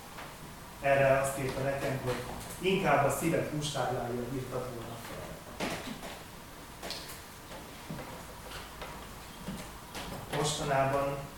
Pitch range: 125-140 Hz